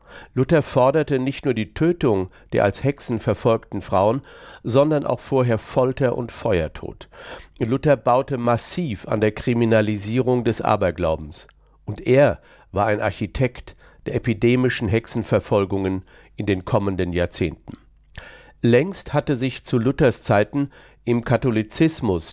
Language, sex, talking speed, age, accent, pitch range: German, male, 120 wpm, 50-69, German, 100-125 Hz